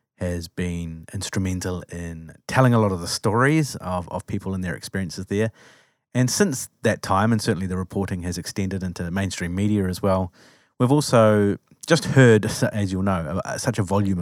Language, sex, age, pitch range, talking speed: English, male, 30-49, 90-110 Hz, 180 wpm